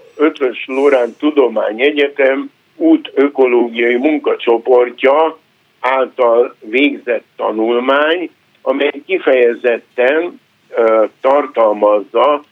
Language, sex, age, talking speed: Hungarian, male, 60-79, 60 wpm